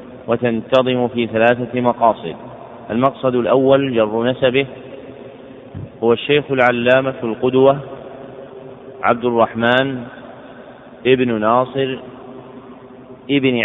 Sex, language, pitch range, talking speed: male, Arabic, 125-140 Hz, 75 wpm